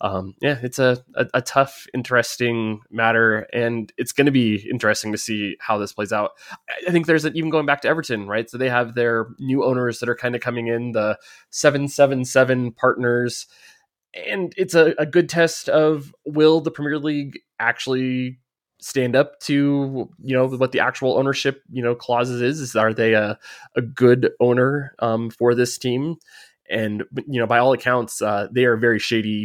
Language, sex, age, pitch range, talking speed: English, male, 20-39, 110-130 Hz, 195 wpm